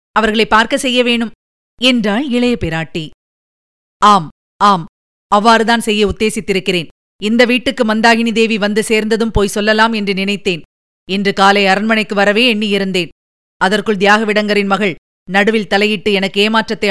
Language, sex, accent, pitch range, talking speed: Tamil, female, native, 200-240 Hz, 120 wpm